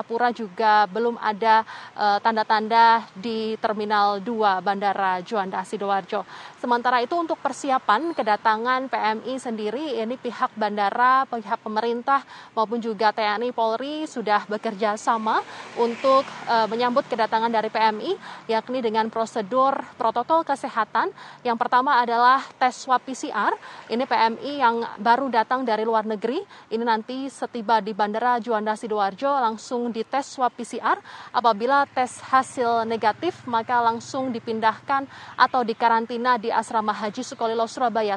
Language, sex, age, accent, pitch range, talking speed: Indonesian, female, 20-39, native, 220-250 Hz, 125 wpm